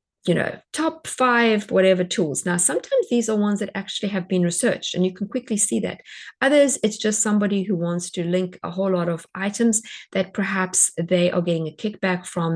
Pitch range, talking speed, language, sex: 170-210 Hz, 205 wpm, English, female